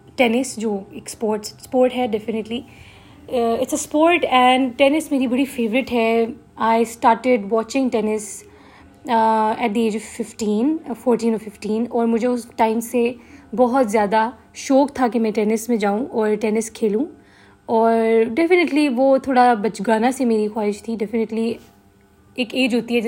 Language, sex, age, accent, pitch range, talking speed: English, female, 20-39, Indian, 220-250 Hz, 110 wpm